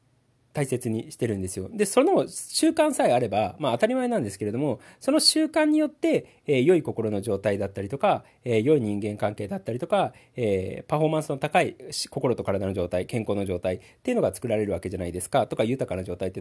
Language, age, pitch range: Japanese, 40-59, 100-165 Hz